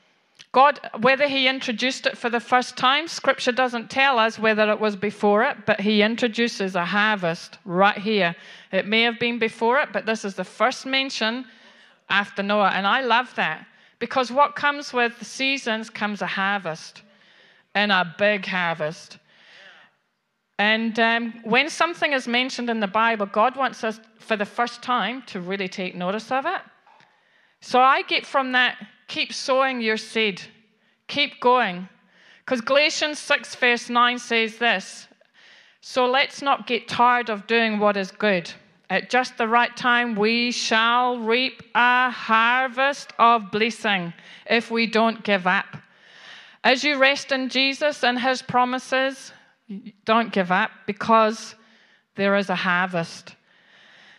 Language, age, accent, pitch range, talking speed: English, 40-59, British, 205-255 Hz, 155 wpm